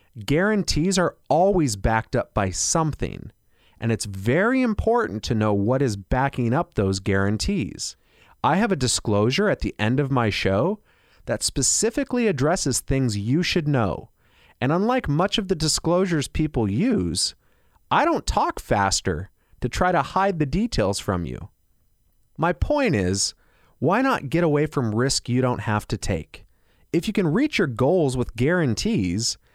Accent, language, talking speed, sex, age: American, English, 160 wpm, male, 30-49